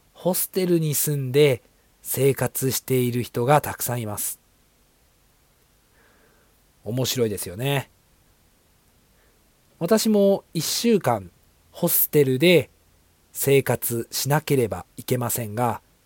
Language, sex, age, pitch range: Japanese, male, 40-59, 115-160 Hz